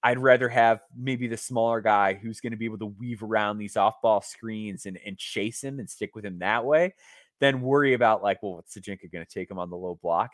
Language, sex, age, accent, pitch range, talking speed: English, male, 20-39, American, 100-130 Hz, 250 wpm